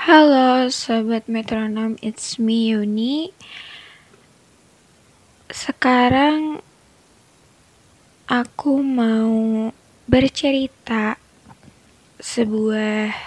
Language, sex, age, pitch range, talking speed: Indonesian, female, 20-39, 205-230 Hz, 50 wpm